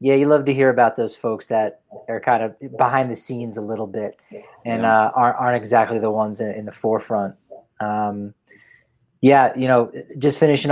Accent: American